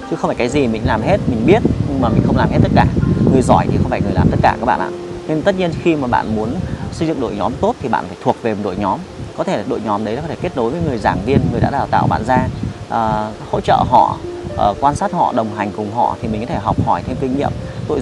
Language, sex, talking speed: Vietnamese, male, 305 wpm